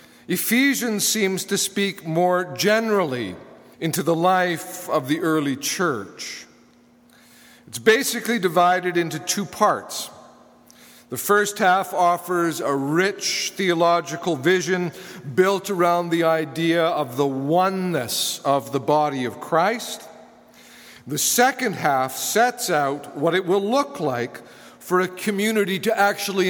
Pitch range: 160-190 Hz